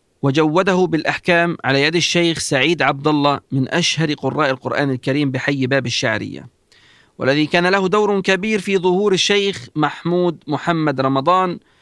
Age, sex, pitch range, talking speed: 40-59, male, 145-190 Hz, 135 wpm